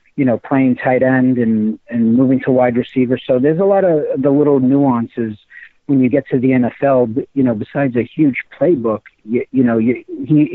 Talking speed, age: 200 wpm, 50-69